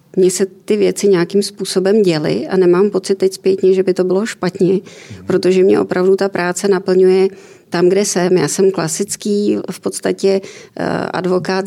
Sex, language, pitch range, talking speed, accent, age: female, Czech, 175-195 Hz, 165 wpm, native, 30-49